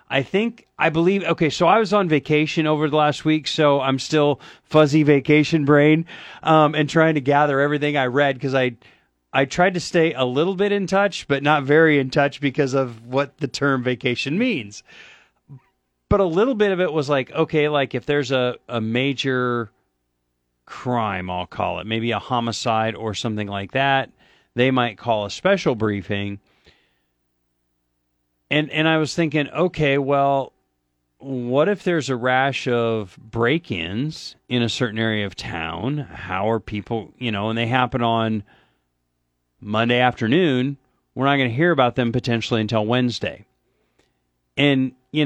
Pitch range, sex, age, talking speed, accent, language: 110-150 Hz, male, 40-59, 165 wpm, American, English